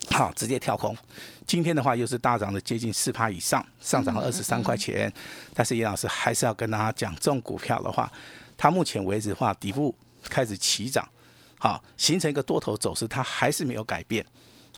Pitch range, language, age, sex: 110-150 Hz, Chinese, 50-69, male